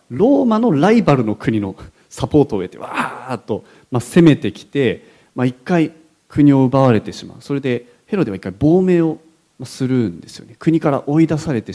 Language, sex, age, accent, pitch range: Japanese, male, 40-59, native, 110-160 Hz